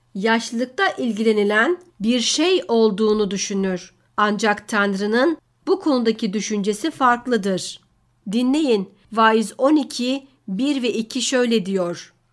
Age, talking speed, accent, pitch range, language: 60-79, 95 wpm, native, 205-235 Hz, Turkish